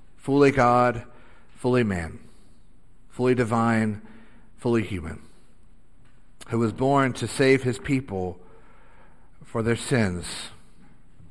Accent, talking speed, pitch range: American, 95 wpm, 105-125 Hz